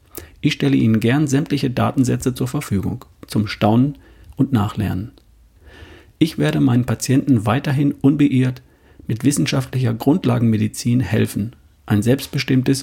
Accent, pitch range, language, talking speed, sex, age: German, 100-130 Hz, German, 110 wpm, male, 40-59